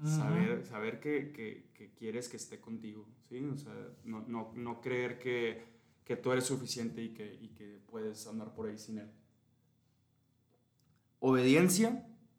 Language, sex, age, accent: Spanish, male, 20-39, Mexican